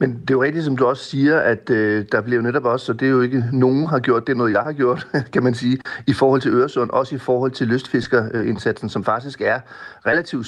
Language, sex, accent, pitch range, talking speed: Danish, male, native, 110-130 Hz, 250 wpm